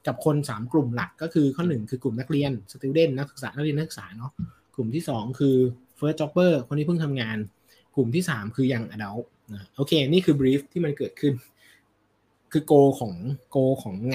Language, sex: Thai, male